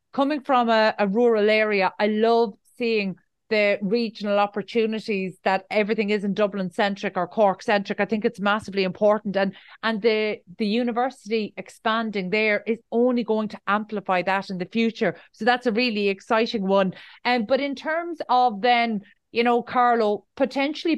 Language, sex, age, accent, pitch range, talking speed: English, female, 30-49, Irish, 205-245 Hz, 165 wpm